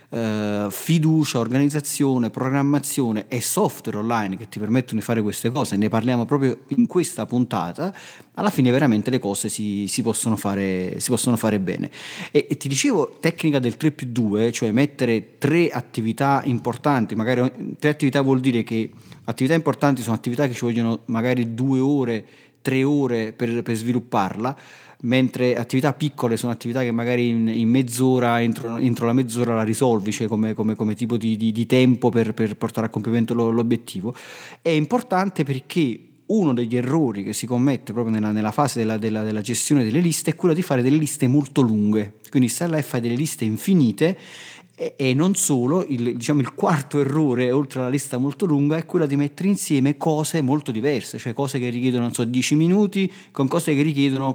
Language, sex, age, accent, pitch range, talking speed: Italian, male, 40-59, native, 115-145 Hz, 185 wpm